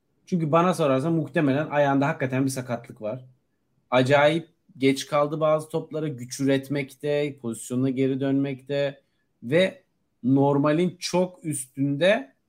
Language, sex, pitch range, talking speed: Turkish, male, 135-160 Hz, 110 wpm